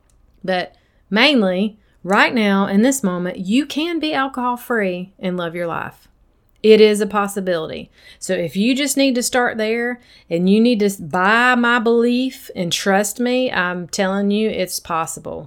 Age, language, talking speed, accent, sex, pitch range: 30-49, English, 165 wpm, American, female, 185-235 Hz